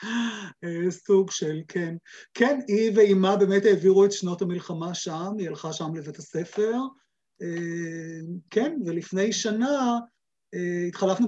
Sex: male